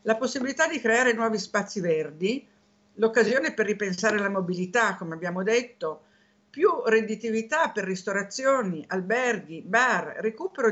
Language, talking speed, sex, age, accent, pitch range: Italian, 125 wpm, female, 50-69, native, 195-255 Hz